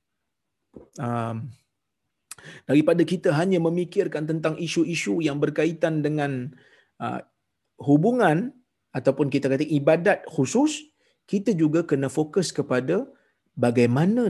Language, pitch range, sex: Malayalam, 135-200 Hz, male